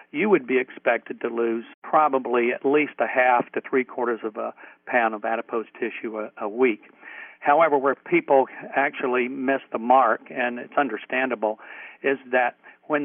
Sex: male